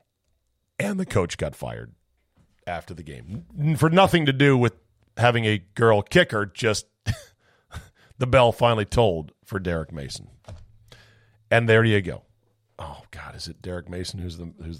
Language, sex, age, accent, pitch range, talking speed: English, male, 40-59, American, 95-120 Hz, 155 wpm